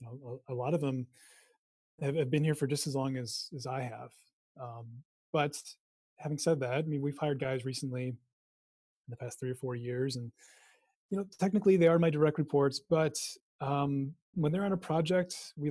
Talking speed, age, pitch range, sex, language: 190 wpm, 30-49, 130-155 Hz, male, English